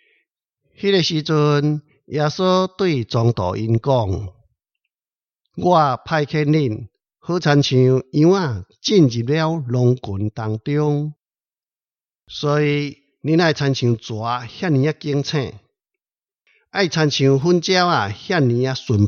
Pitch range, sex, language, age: 115-170 Hz, male, Chinese, 60-79